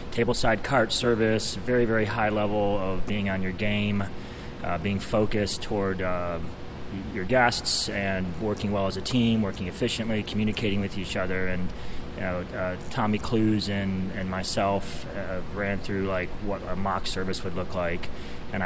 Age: 30-49